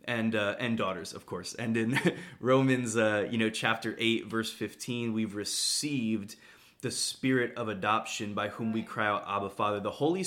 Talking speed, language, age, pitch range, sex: 180 wpm, English, 20-39, 110-130 Hz, male